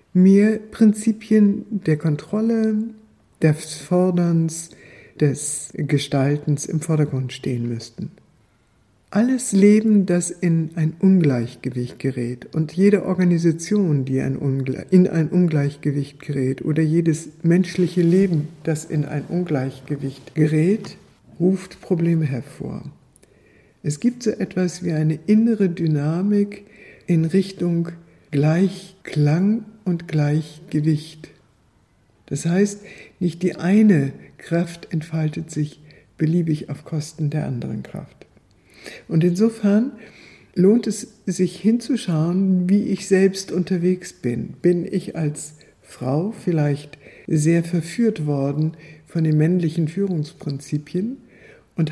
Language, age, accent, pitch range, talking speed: German, 60-79, German, 150-190 Hz, 105 wpm